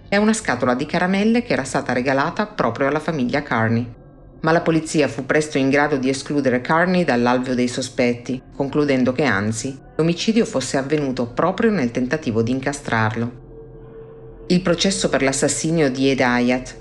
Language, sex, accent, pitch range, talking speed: Italian, female, native, 125-160 Hz, 155 wpm